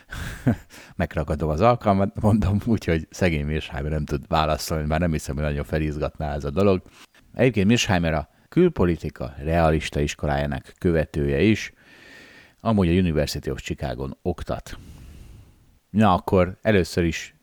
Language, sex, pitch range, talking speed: Hungarian, male, 75-100 Hz, 130 wpm